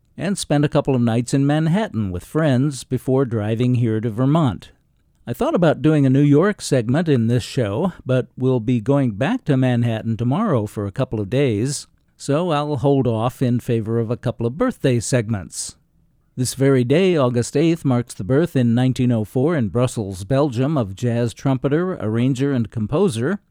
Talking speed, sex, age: 180 wpm, male, 50-69